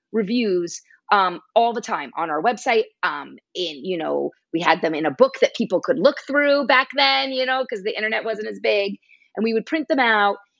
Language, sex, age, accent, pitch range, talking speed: English, female, 30-49, American, 200-270 Hz, 220 wpm